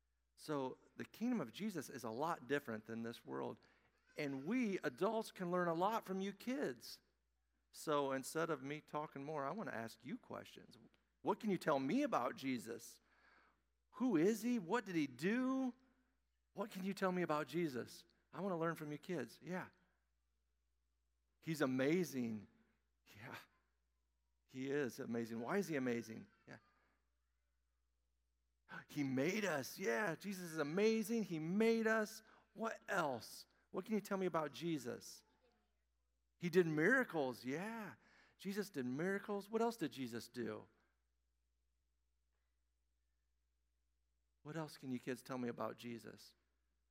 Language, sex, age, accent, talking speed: English, male, 50-69, American, 145 wpm